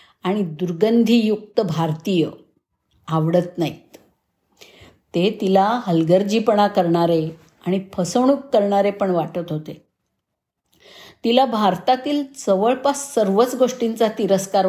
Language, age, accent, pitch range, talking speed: Marathi, 50-69, native, 170-215 Hz, 90 wpm